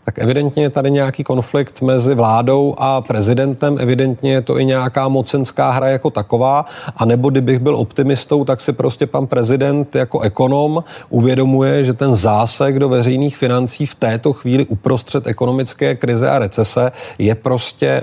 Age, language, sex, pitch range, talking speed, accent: 30-49, Czech, male, 115-140 Hz, 160 wpm, native